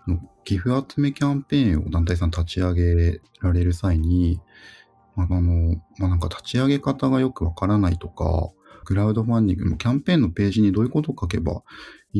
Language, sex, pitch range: Japanese, male, 85-110 Hz